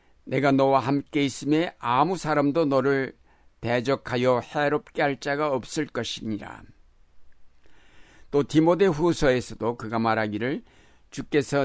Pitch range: 125-150 Hz